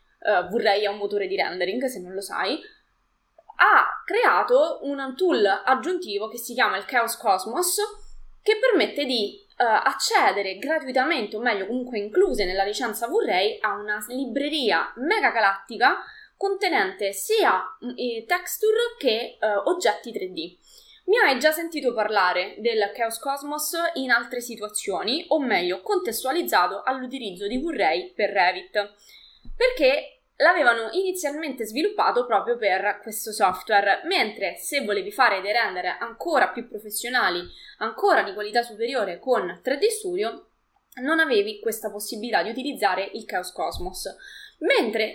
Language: Italian